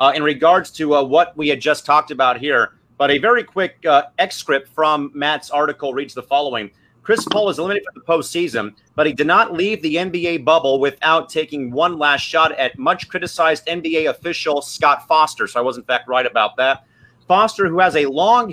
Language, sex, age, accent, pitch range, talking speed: English, male, 30-49, American, 140-170 Hz, 205 wpm